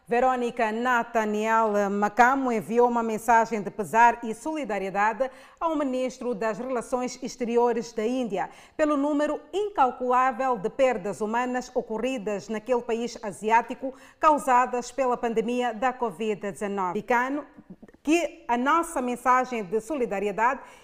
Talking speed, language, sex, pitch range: 110 wpm, Portuguese, female, 230-275 Hz